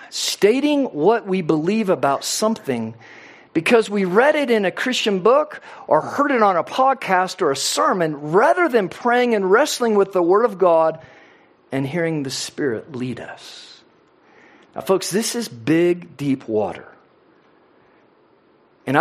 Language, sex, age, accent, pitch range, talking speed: English, male, 50-69, American, 170-240 Hz, 150 wpm